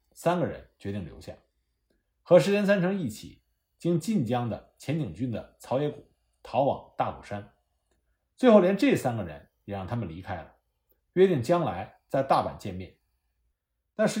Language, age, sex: Chinese, 50-69, male